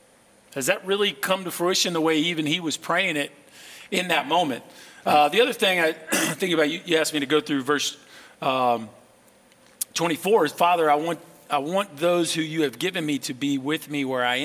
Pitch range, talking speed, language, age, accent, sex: 140-180 Hz, 210 wpm, English, 40-59, American, male